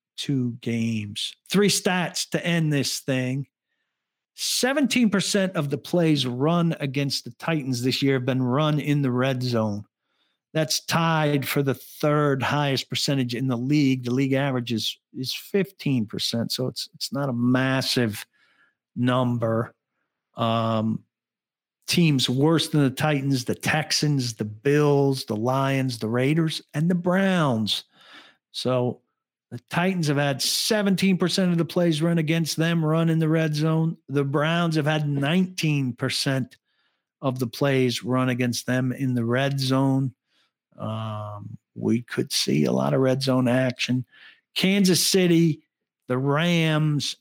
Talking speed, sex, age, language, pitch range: 140 wpm, male, 50-69, English, 125-155 Hz